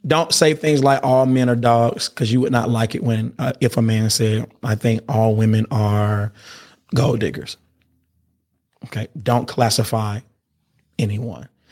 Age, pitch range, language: 30-49, 110-130 Hz, English